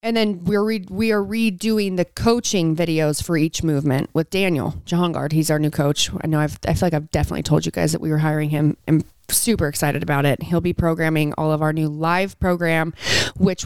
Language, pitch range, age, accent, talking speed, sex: English, 155-200 Hz, 30-49, American, 230 wpm, female